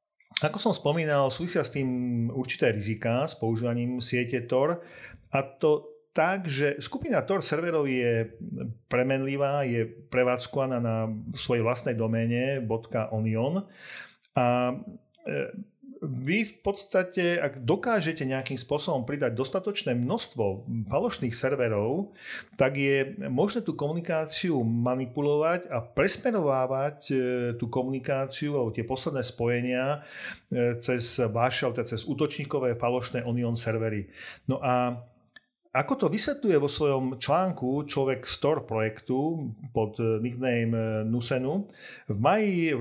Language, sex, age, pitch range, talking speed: Slovak, male, 40-59, 120-150 Hz, 115 wpm